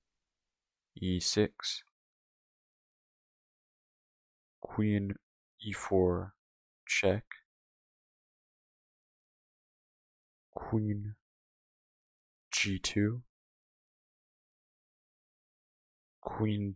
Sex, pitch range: male, 70-105 Hz